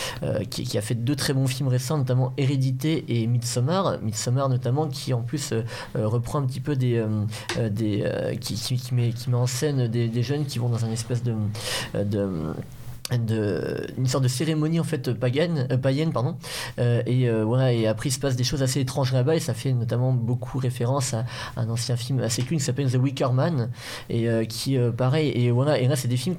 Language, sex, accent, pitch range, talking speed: French, male, French, 115-135 Hz, 225 wpm